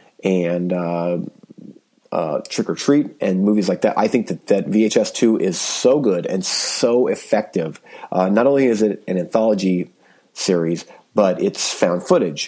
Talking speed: 165 wpm